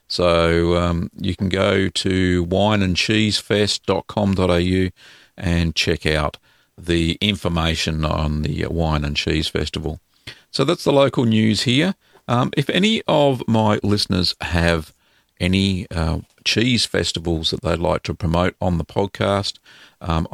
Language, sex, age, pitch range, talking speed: English, male, 50-69, 85-105 Hz, 130 wpm